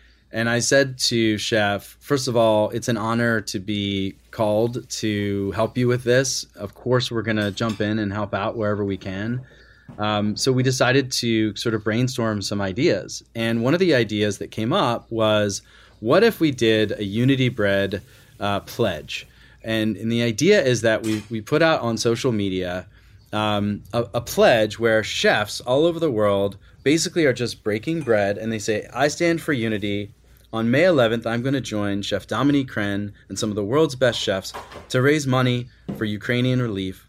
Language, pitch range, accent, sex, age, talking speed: English, 105-125 Hz, American, male, 30-49, 190 wpm